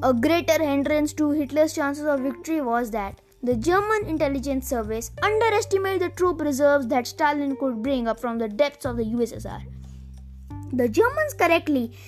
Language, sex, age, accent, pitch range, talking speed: English, female, 20-39, Indian, 240-330 Hz, 160 wpm